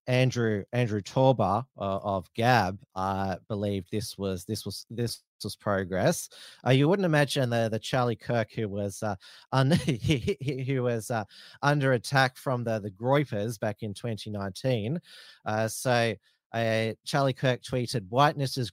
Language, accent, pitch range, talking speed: English, Australian, 105-130 Hz, 150 wpm